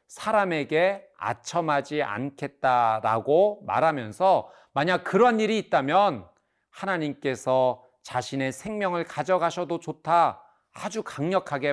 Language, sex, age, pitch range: Korean, male, 40-59, 135-195 Hz